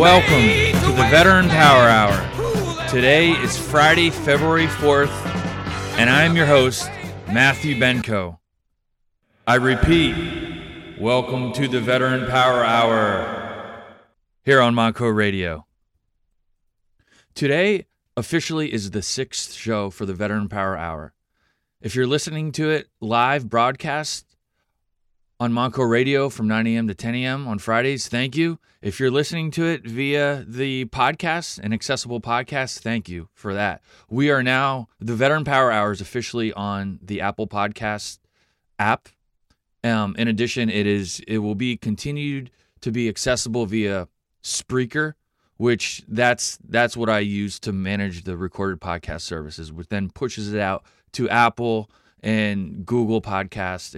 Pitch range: 100-130 Hz